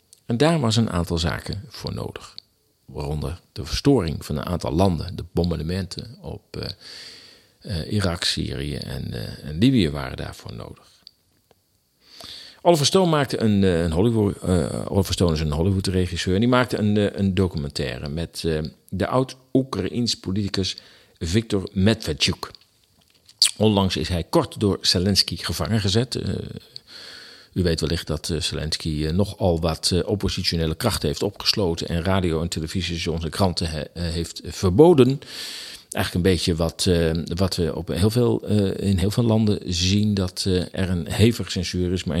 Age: 50-69